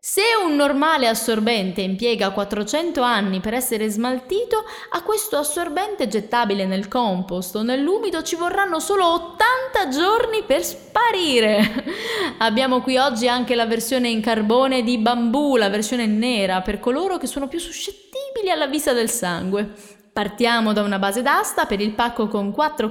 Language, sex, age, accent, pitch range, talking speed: Italian, female, 20-39, native, 225-345 Hz, 150 wpm